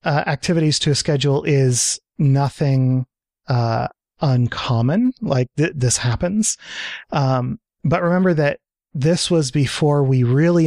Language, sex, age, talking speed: English, male, 30-49, 120 wpm